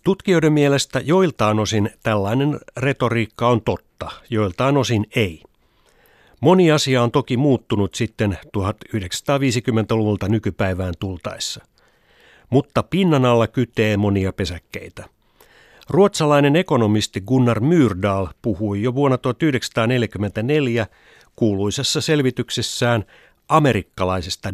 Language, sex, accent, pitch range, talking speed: Finnish, male, native, 105-135 Hz, 90 wpm